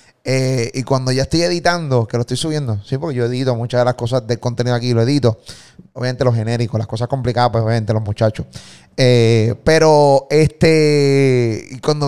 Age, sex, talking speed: 30-49, male, 190 wpm